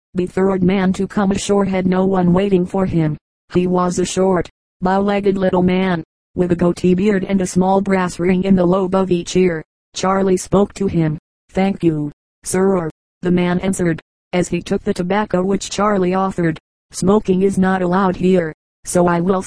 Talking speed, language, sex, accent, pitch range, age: 185 wpm, English, female, American, 175-195 Hz, 40-59